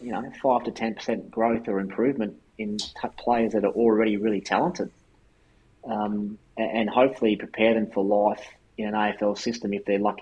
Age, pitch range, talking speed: 20-39, 105-115 Hz, 180 wpm